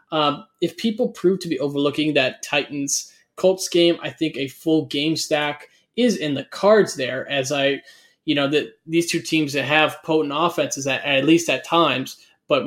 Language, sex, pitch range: English, male, 145-175 Hz